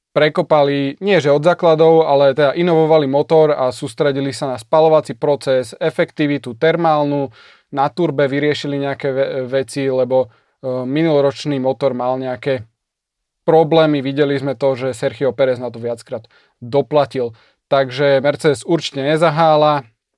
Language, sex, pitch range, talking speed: Slovak, male, 135-160 Hz, 125 wpm